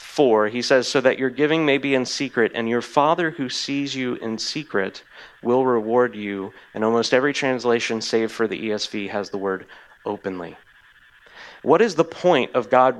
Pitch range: 110-140 Hz